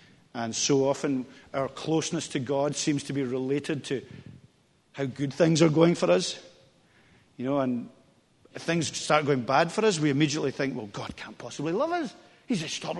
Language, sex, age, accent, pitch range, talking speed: English, male, 40-59, British, 130-175 Hz, 190 wpm